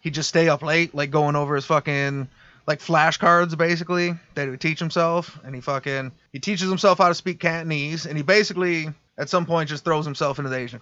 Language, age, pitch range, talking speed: English, 30-49, 145-175 Hz, 220 wpm